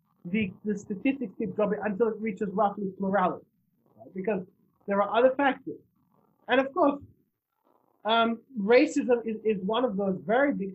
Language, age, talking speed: English, 20-39, 155 wpm